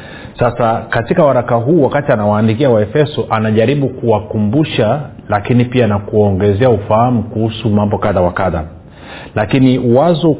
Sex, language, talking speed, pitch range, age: male, Swahili, 110 wpm, 105-125 Hz, 40-59